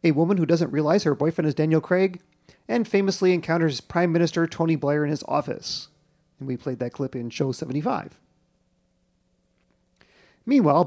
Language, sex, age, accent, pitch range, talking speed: English, male, 40-59, American, 145-180 Hz, 160 wpm